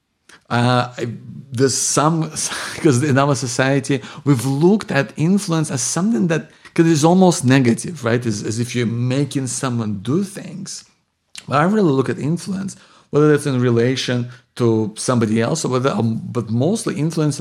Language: English